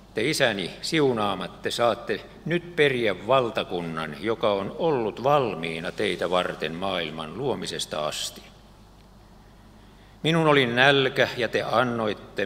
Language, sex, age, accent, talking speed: Finnish, male, 50-69, native, 105 wpm